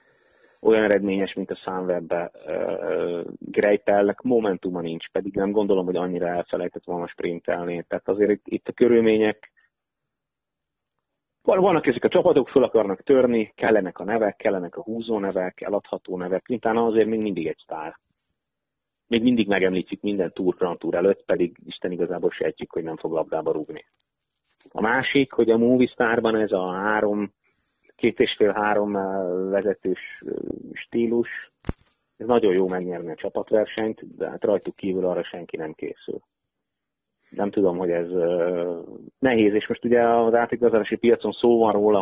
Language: Hungarian